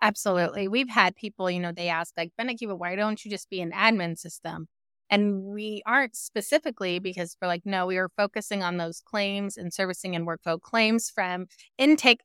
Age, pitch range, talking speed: 20-39, 175-215 Hz, 190 wpm